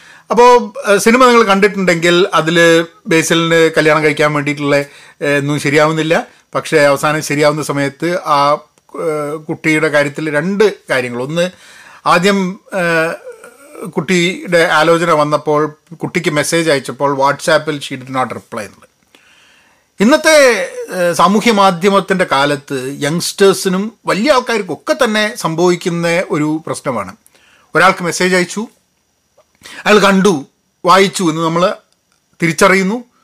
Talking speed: 95 wpm